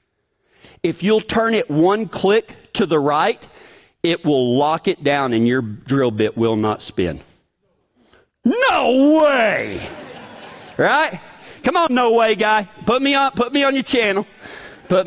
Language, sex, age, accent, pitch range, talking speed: English, male, 50-69, American, 175-265 Hz, 150 wpm